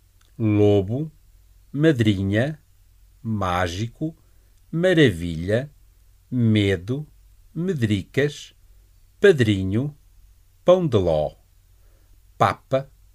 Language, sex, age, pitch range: Chinese, male, 50-69, 90-130 Hz